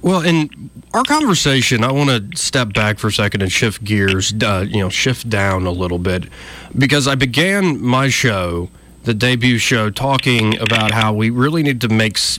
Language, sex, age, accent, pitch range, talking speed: English, male, 30-49, American, 110-145 Hz, 190 wpm